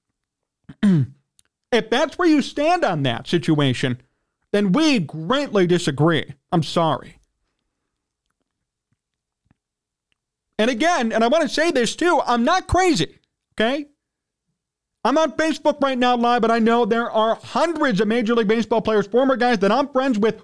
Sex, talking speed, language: male, 145 wpm, English